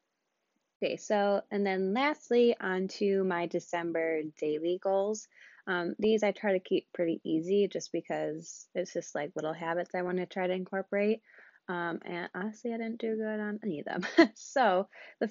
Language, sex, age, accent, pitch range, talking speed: English, female, 20-39, American, 170-200 Hz, 175 wpm